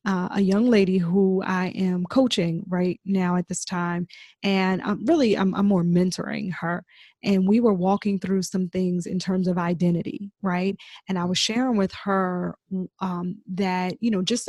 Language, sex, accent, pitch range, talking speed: English, female, American, 180-215 Hz, 180 wpm